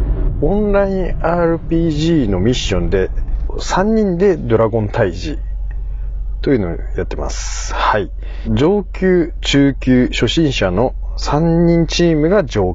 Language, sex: Japanese, male